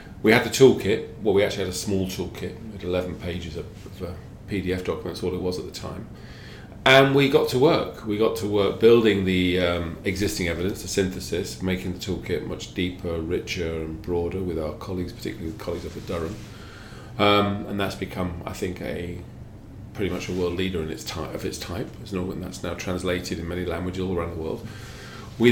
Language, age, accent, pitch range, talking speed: English, 40-59, British, 90-110 Hz, 210 wpm